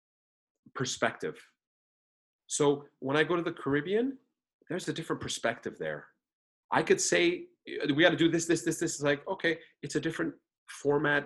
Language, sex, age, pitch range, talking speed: English, male, 30-49, 120-165 Hz, 165 wpm